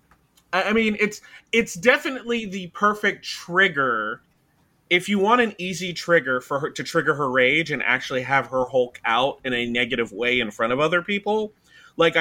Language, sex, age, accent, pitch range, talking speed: English, male, 30-49, American, 135-195 Hz, 170 wpm